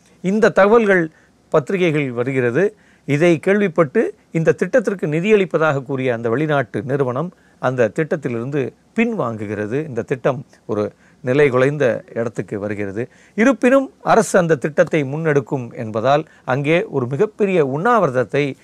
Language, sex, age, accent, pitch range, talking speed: Tamil, male, 40-59, native, 125-175 Hz, 105 wpm